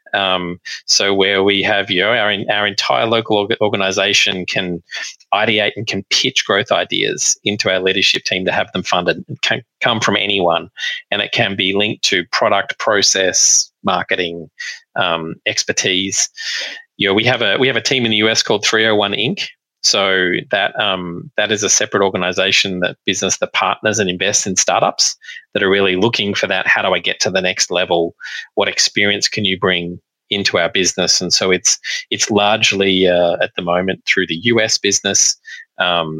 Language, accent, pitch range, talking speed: English, Australian, 90-105 Hz, 180 wpm